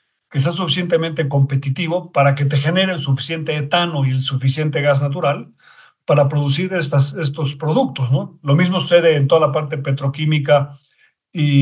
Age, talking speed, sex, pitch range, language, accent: 50-69, 160 wpm, male, 140-175 Hz, Spanish, Mexican